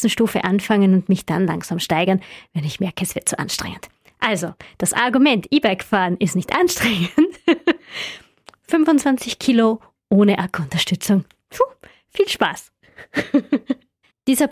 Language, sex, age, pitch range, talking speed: German, female, 20-39, 190-245 Hz, 120 wpm